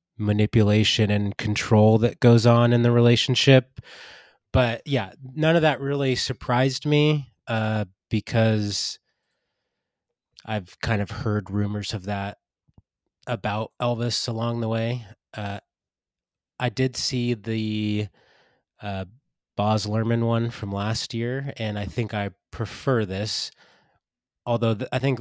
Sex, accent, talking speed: male, American, 125 wpm